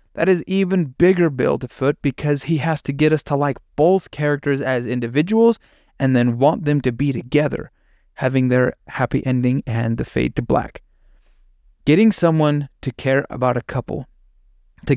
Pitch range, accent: 125-160 Hz, American